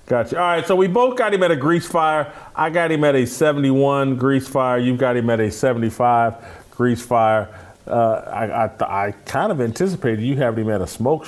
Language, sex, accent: English, male, American